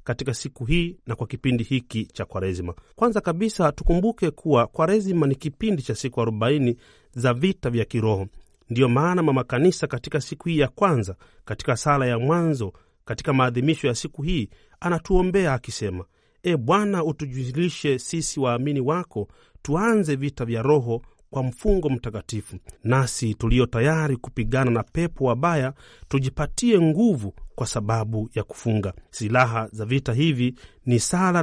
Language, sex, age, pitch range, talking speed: Swahili, male, 40-59, 115-160 Hz, 145 wpm